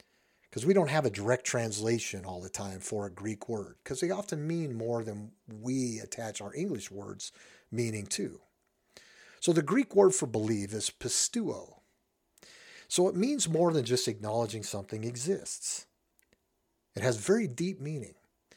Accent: American